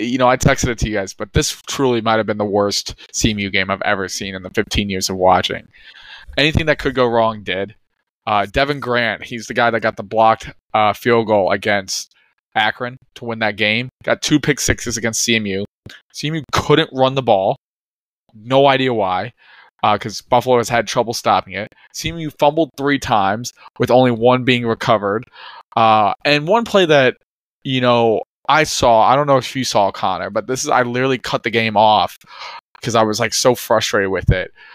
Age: 20-39